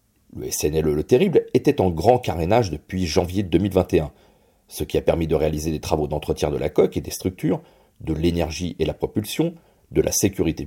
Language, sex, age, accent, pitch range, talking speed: French, male, 40-59, French, 80-120 Hz, 190 wpm